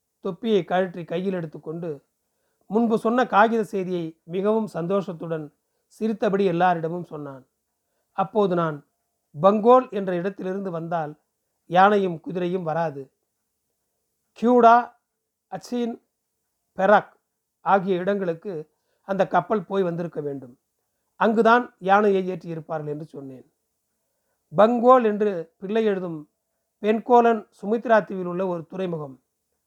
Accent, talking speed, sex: native, 95 wpm, male